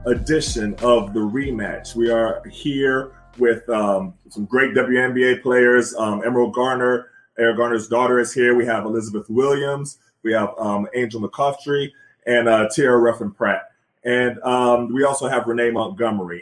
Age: 20-39